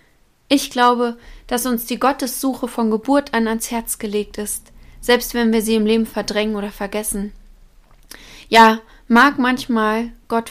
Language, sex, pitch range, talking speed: German, female, 220-255 Hz, 150 wpm